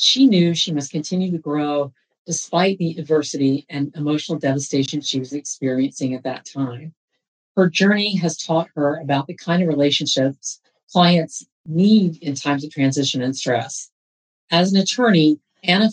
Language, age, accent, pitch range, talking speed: English, 50-69, American, 140-175 Hz, 155 wpm